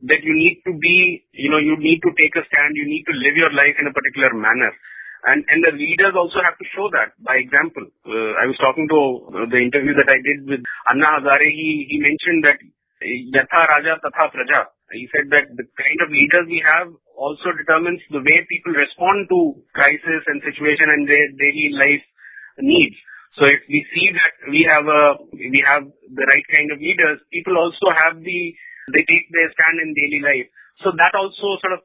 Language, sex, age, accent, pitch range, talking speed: English, male, 30-49, Indian, 140-170 Hz, 205 wpm